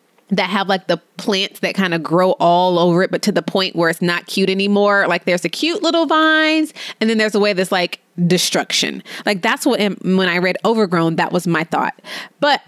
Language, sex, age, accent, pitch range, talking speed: English, female, 20-39, American, 180-230 Hz, 225 wpm